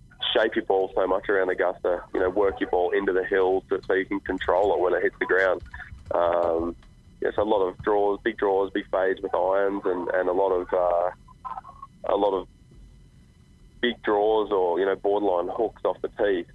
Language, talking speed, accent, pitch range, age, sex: English, 215 wpm, Australian, 100-120 Hz, 20-39, male